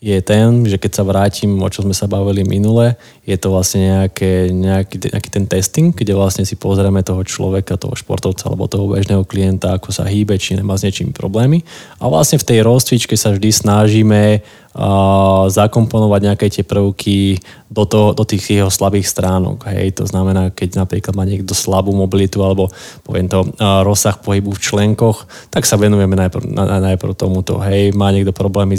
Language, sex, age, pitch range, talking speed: Slovak, male, 20-39, 95-110 Hz, 185 wpm